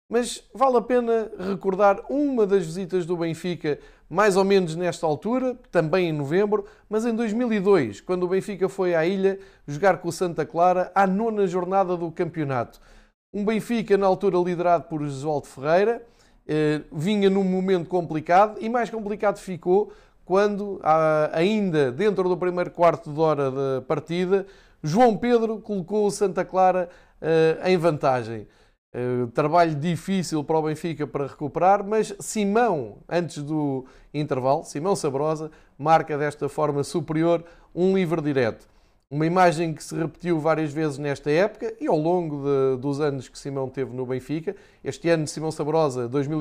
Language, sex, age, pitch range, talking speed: Portuguese, male, 20-39, 150-195 Hz, 150 wpm